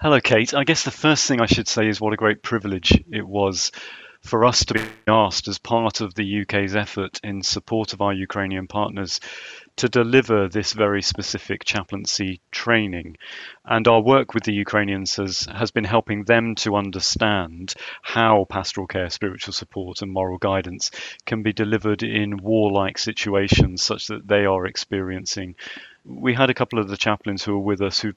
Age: 30-49